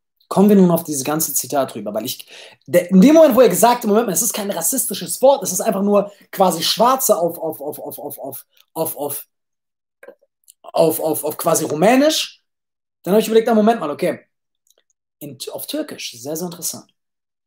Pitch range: 155-220 Hz